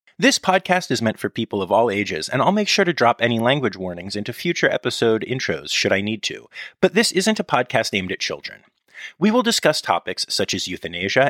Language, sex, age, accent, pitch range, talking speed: English, male, 30-49, American, 100-165 Hz, 220 wpm